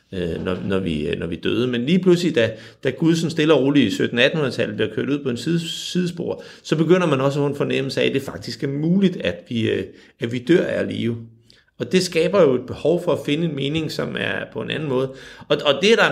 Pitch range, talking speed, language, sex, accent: 105-145 Hz, 250 wpm, Danish, male, native